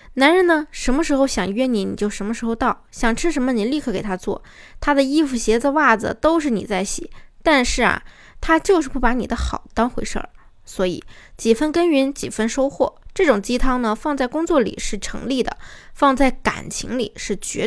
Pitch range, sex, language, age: 220-290 Hz, female, Chinese, 20-39